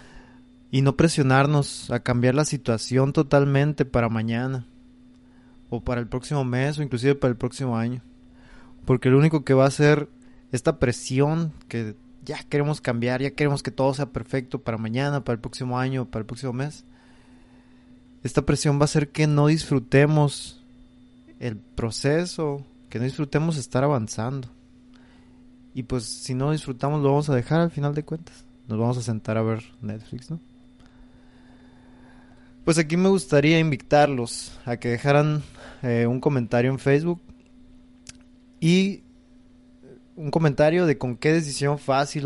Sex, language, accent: male, Spanish, Mexican